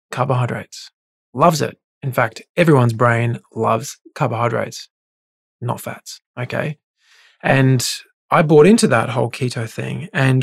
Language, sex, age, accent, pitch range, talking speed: English, male, 20-39, Australian, 115-140 Hz, 120 wpm